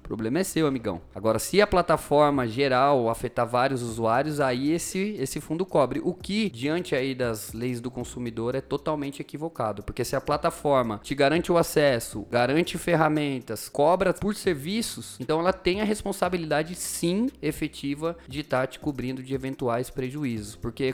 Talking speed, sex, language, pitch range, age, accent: 165 wpm, male, Portuguese, 125-160 Hz, 20-39, Brazilian